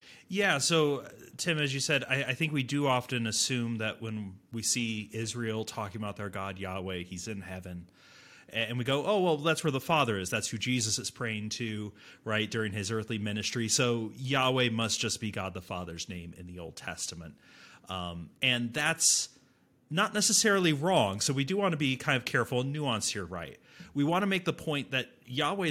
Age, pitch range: 30-49, 110-145 Hz